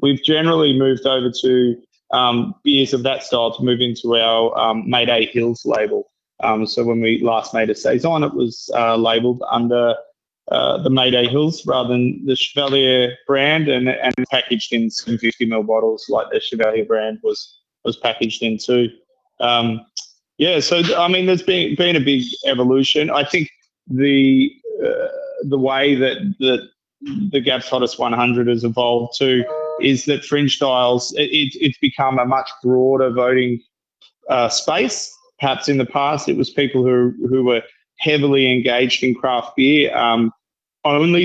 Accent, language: Australian, English